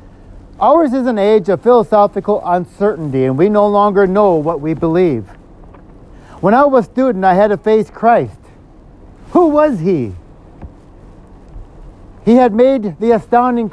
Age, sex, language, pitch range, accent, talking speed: 50-69, male, English, 160-235 Hz, American, 145 wpm